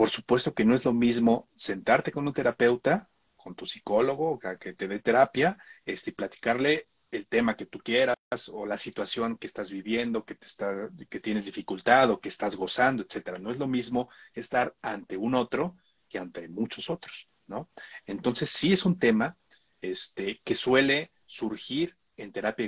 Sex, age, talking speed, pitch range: male, 40-59, 175 wpm, 110-145 Hz